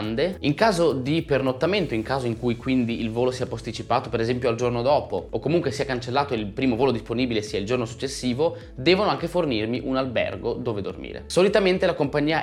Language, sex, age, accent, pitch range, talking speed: Italian, male, 20-39, native, 110-135 Hz, 195 wpm